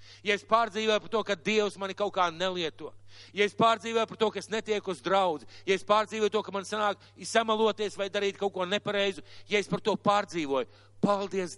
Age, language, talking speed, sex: 50-69, English, 205 wpm, male